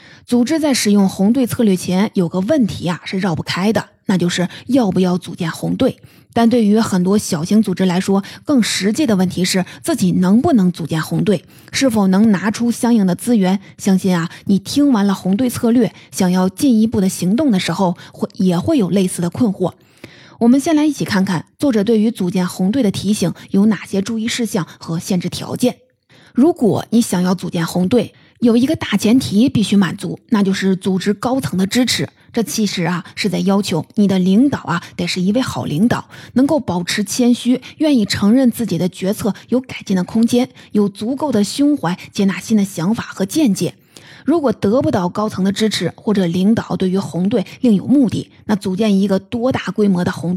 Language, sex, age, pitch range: Chinese, female, 20-39, 180-230 Hz